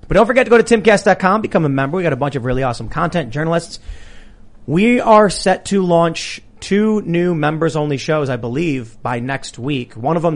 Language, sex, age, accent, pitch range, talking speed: English, male, 30-49, American, 130-170 Hz, 215 wpm